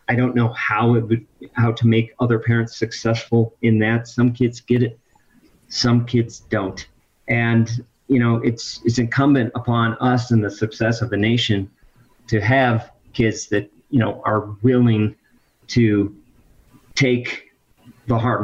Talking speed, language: 155 wpm, English